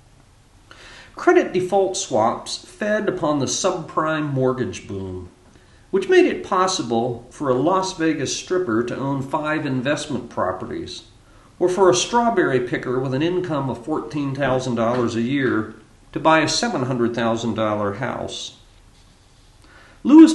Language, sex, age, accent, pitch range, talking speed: English, male, 50-69, American, 115-160 Hz, 120 wpm